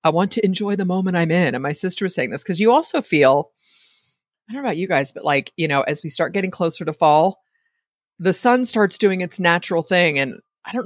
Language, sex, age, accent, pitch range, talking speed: English, female, 30-49, American, 135-175 Hz, 250 wpm